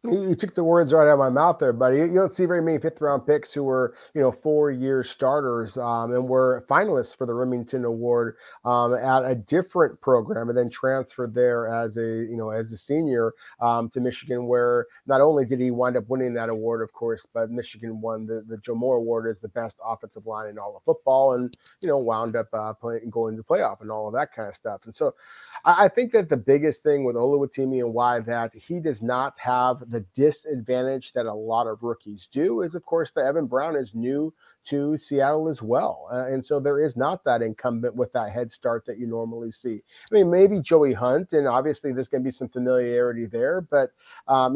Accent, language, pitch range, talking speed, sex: American, English, 115-140 Hz, 225 wpm, male